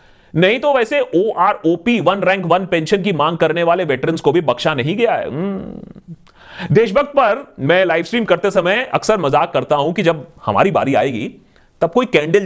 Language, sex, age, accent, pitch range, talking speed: Hindi, male, 30-49, native, 150-230 Hz, 190 wpm